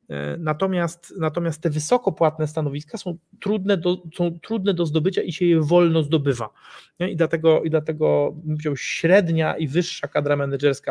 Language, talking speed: Polish, 150 wpm